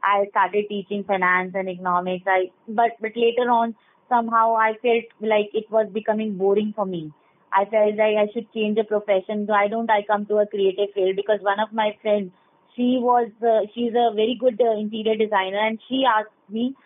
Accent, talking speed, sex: Indian, 200 wpm, female